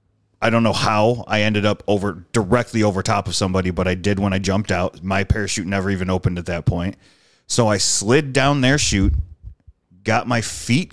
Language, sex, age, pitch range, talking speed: English, male, 30-49, 95-125 Hz, 205 wpm